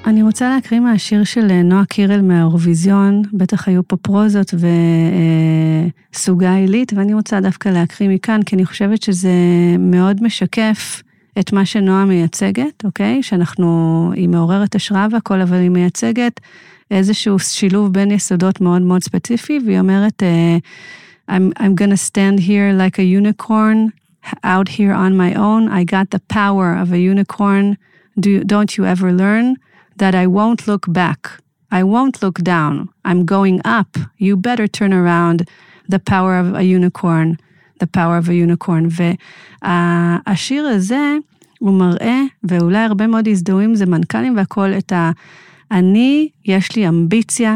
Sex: female